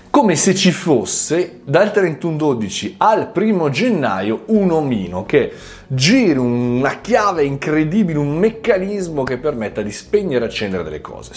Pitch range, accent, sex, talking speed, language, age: 105-155 Hz, native, male, 135 wpm, Italian, 30-49